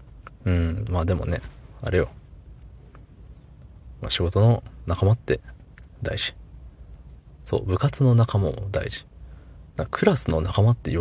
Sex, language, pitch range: male, Japanese, 80-110 Hz